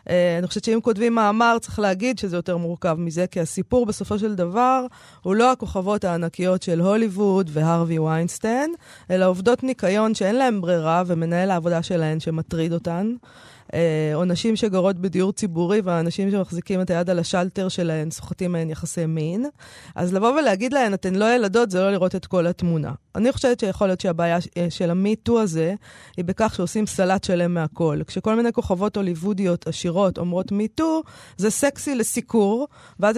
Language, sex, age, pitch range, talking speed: Hebrew, female, 20-39, 175-225 Hz, 165 wpm